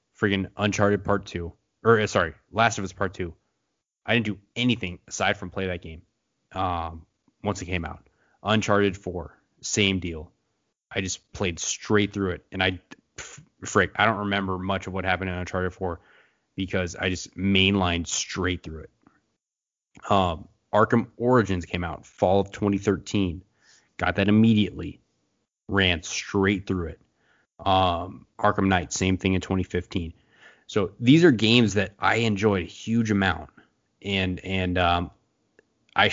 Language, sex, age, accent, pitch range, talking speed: English, male, 20-39, American, 90-110 Hz, 150 wpm